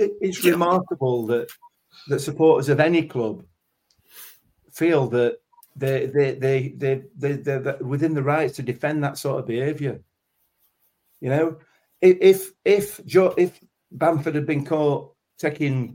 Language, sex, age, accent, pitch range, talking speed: English, male, 40-59, British, 115-150 Hz, 130 wpm